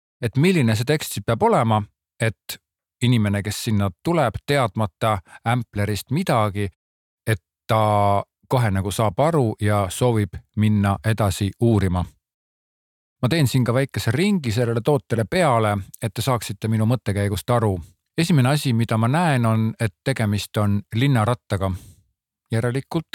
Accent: Finnish